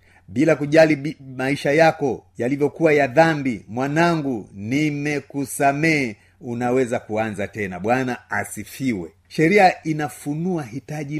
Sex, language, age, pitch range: male, Swahili, 40-59, 100-150 Hz